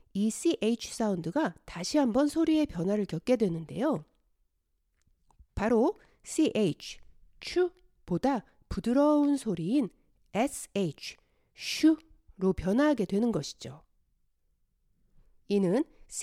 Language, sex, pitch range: Korean, female, 180-295 Hz